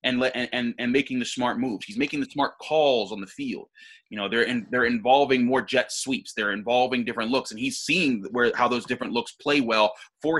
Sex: male